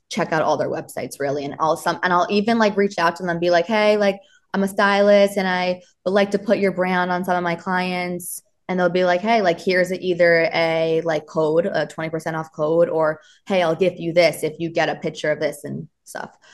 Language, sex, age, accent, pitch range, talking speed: English, female, 20-39, American, 160-195 Hz, 255 wpm